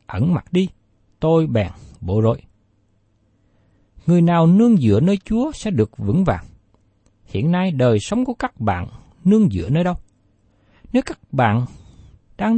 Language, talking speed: Vietnamese, 155 wpm